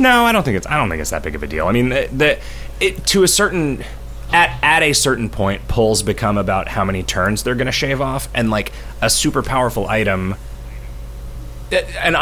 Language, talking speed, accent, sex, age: English, 220 wpm, American, male, 30-49